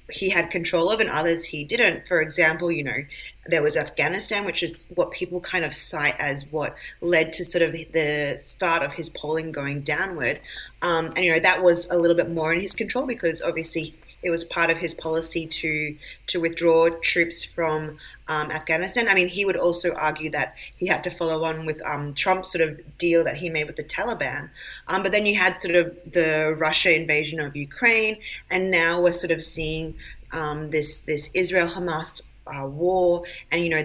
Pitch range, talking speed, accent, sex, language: 155-185 Hz, 200 wpm, Australian, female, English